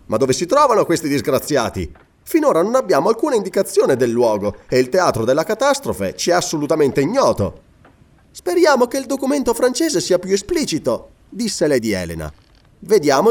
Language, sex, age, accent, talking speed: Italian, male, 30-49, native, 155 wpm